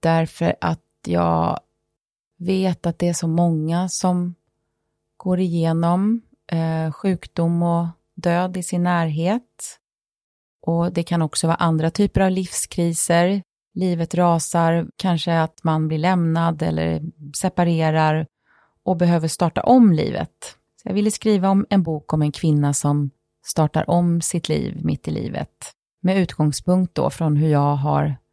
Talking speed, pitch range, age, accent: 140 wpm, 150-175 Hz, 30-49, native